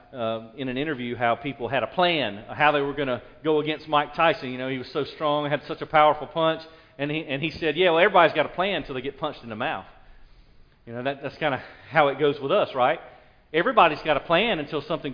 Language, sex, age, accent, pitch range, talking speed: English, male, 40-59, American, 115-150 Hz, 245 wpm